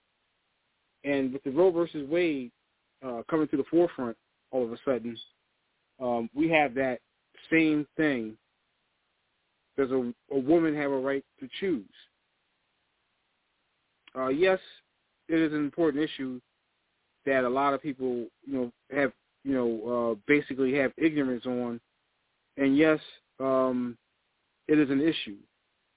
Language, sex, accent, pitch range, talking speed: English, male, American, 125-155 Hz, 135 wpm